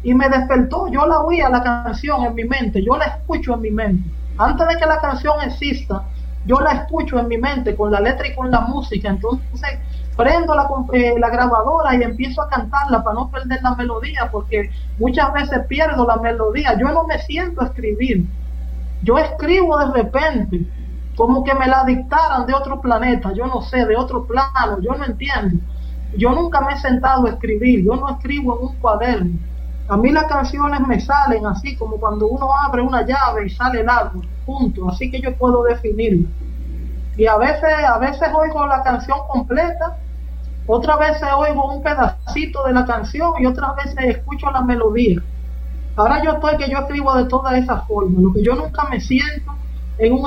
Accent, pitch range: American, 215-275 Hz